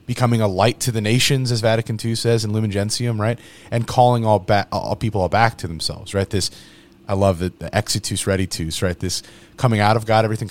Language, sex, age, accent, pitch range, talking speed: English, male, 30-49, American, 95-120 Hz, 225 wpm